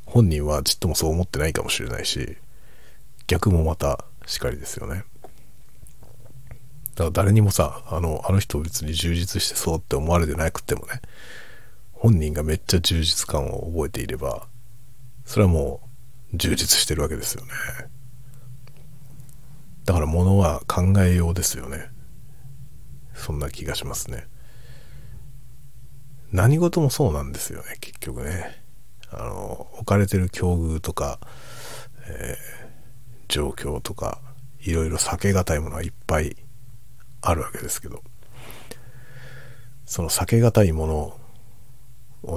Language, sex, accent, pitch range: Japanese, male, native, 85-130 Hz